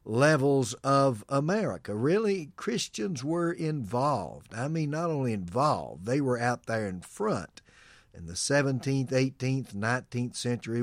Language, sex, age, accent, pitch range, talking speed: English, male, 50-69, American, 105-140 Hz, 135 wpm